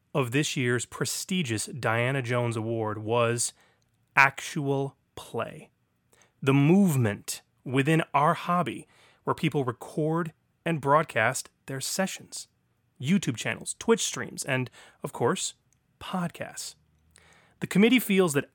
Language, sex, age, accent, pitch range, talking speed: English, male, 30-49, American, 110-150 Hz, 110 wpm